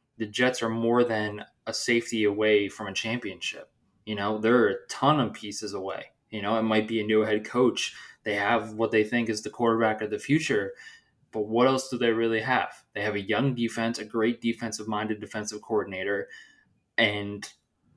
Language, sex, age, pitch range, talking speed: English, male, 20-39, 110-120 Hz, 195 wpm